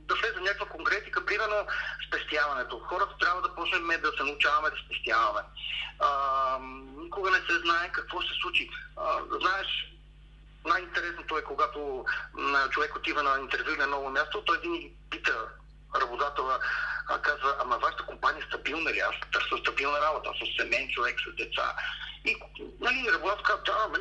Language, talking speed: Bulgarian, 160 wpm